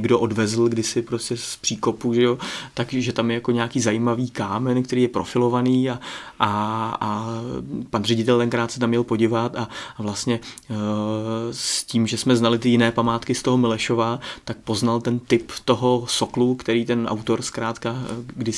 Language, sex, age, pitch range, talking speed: Czech, male, 30-49, 110-120 Hz, 180 wpm